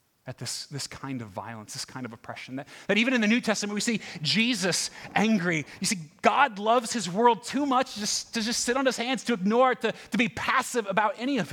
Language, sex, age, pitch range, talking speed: English, male, 30-49, 125-200 Hz, 240 wpm